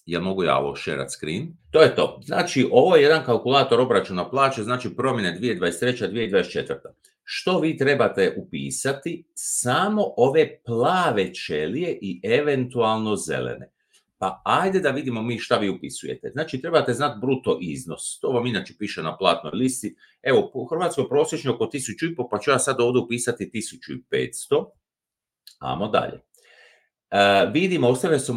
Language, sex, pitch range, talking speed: Croatian, male, 110-160 Hz, 150 wpm